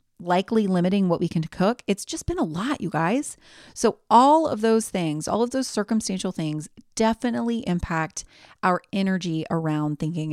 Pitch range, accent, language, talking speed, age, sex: 160-220 Hz, American, English, 170 wpm, 30-49, female